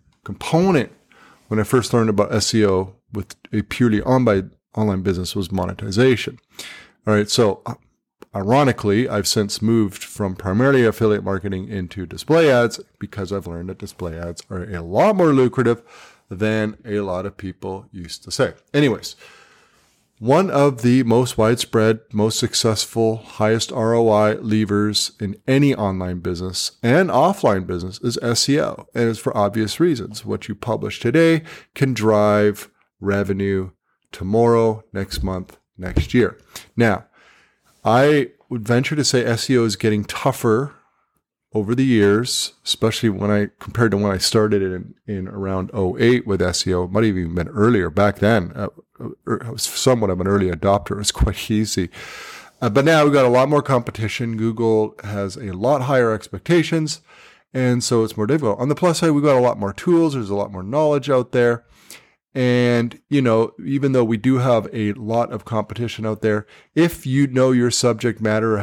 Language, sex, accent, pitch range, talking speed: English, male, American, 100-125 Hz, 165 wpm